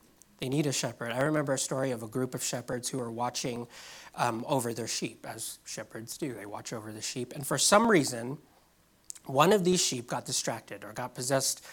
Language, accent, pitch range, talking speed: English, American, 130-175 Hz, 210 wpm